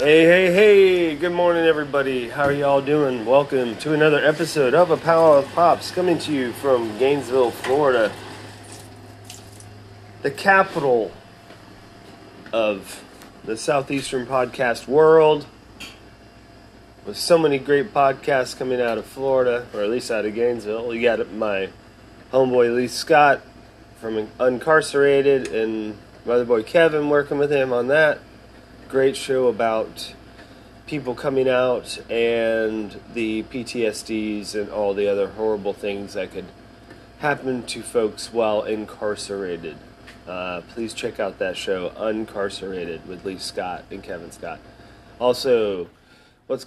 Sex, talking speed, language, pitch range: male, 130 wpm, English, 105-140 Hz